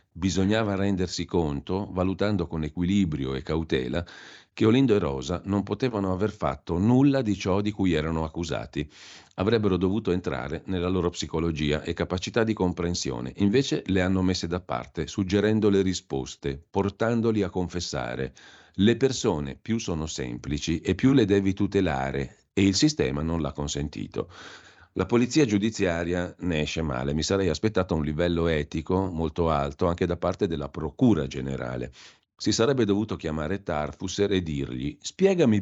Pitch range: 75-105 Hz